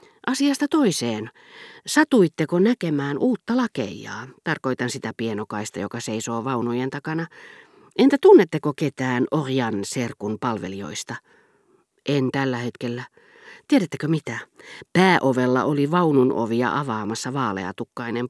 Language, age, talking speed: Finnish, 40-59, 95 wpm